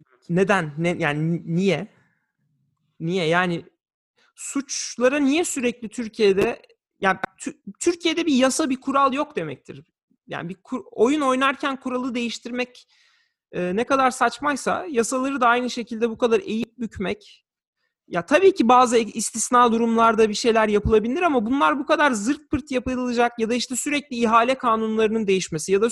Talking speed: 145 wpm